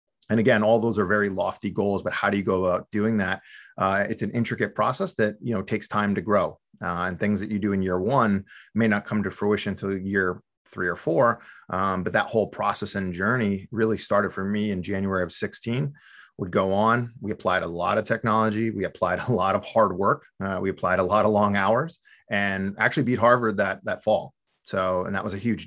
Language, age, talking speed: English, 30-49, 230 wpm